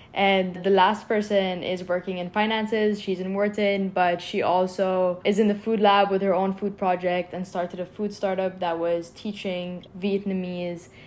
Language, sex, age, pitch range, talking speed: English, female, 10-29, 180-220 Hz, 180 wpm